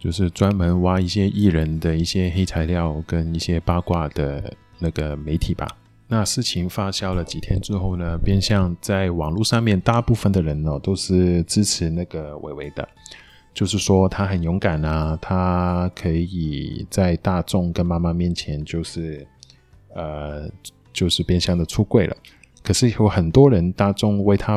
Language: Chinese